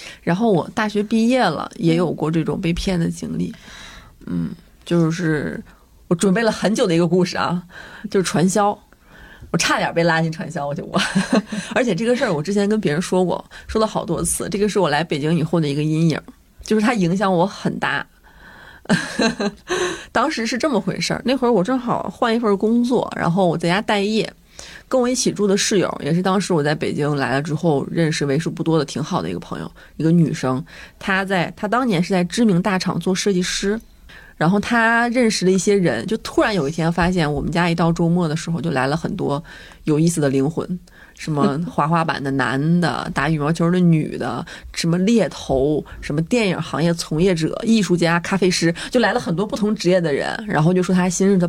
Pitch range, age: 165-205 Hz, 30-49